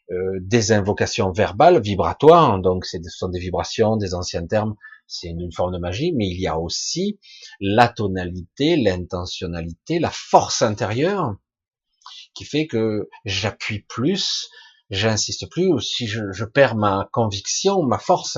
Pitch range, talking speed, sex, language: 95-155 Hz, 145 wpm, male, French